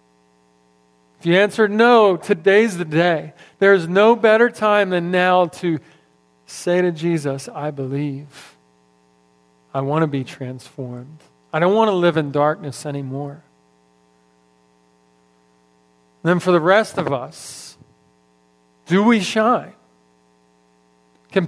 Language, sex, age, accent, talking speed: English, male, 50-69, American, 115 wpm